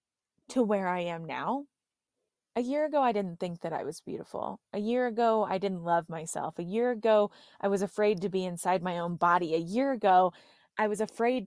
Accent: American